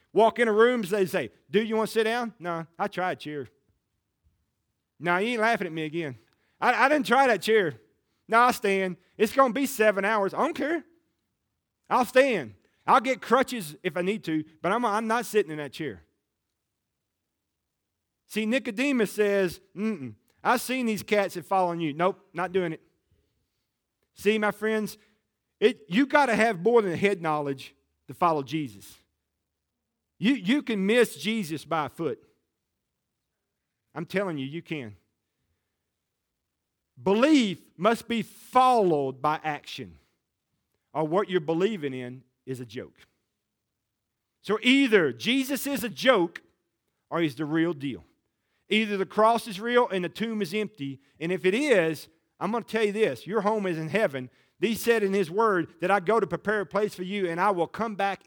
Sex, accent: male, American